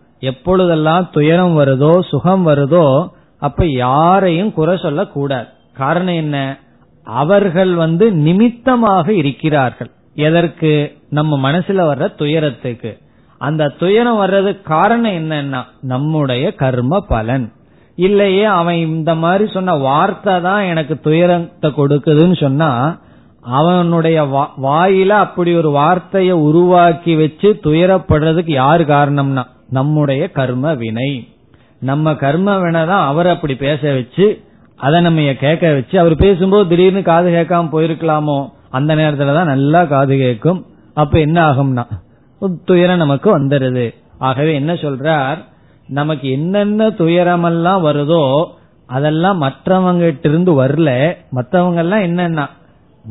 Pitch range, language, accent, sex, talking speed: 140-180 Hz, Tamil, native, male, 105 wpm